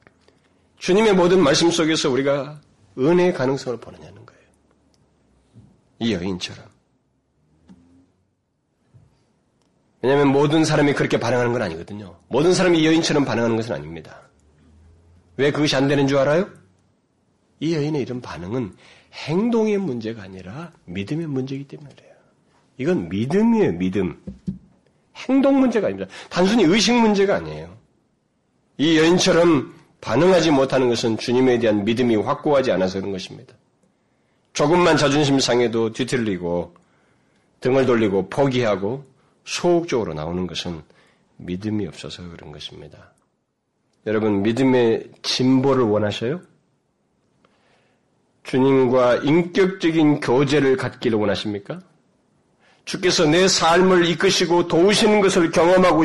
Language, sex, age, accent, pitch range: Korean, male, 40-59, native, 105-170 Hz